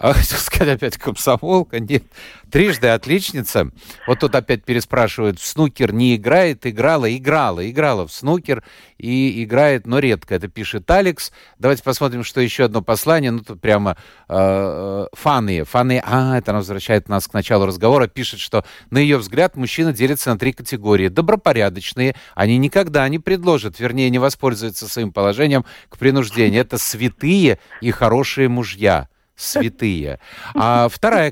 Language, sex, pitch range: Russian, male, 110-150 Hz